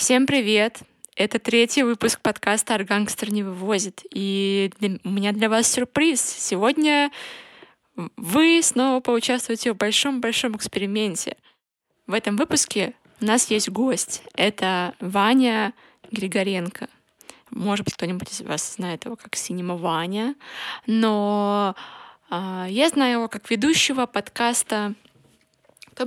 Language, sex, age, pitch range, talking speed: Russian, female, 20-39, 205-245 Hz, 115 wpm